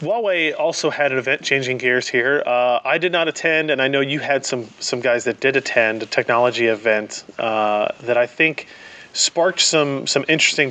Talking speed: 195 wpm